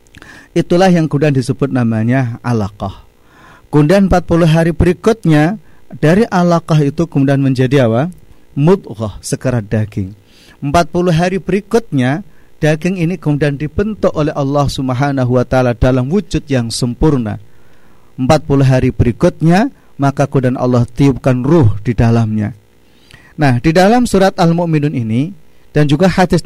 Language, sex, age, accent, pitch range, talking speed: Indonesian, male, 40-59, native, 120-160 Hz, 120 wpm